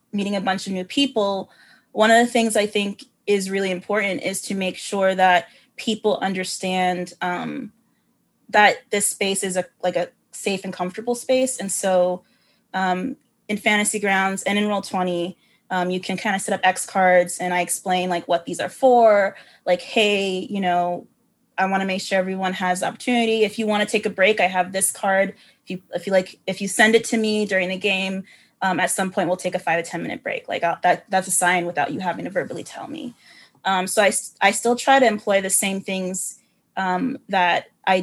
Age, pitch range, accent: 20-39, 185-210 Hz, American